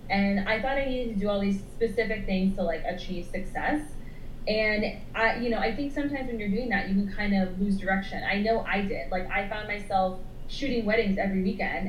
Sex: female